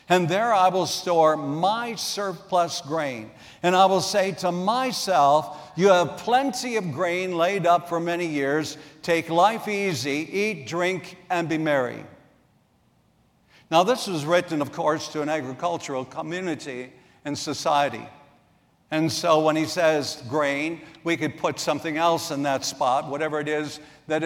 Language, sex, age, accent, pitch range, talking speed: English, male, 60-79, American, 150-190 Hz, 155 wpm